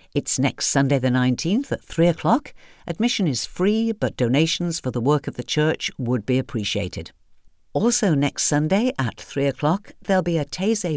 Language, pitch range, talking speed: English, 120-170 Hz, 175 wpm